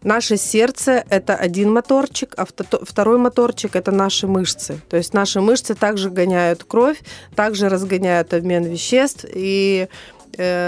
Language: Russian